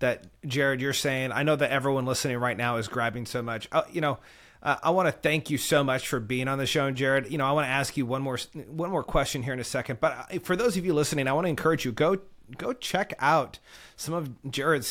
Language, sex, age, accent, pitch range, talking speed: English, male, 30-49, American, 135-165 Hz, 270 wpm